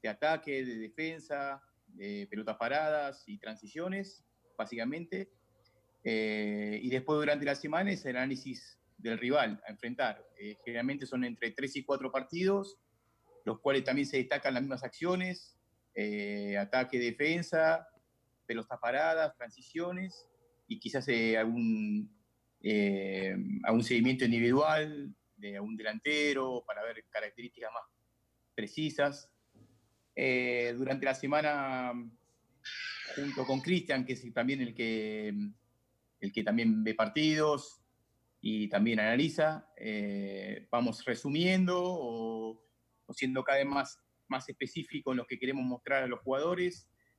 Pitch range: 115-150 Hz